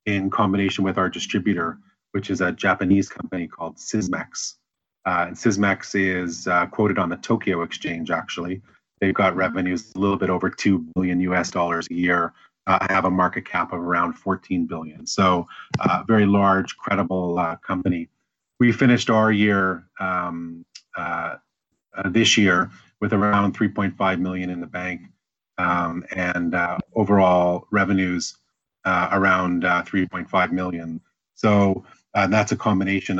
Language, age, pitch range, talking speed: English, 30-49, 90-100 Hz, 150 wpm